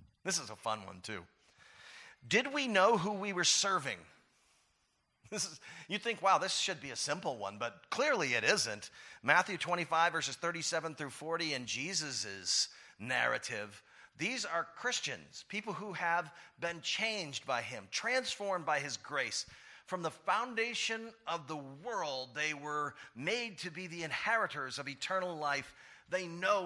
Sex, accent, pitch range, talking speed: male, American, 130-180 Hz, 150 wpm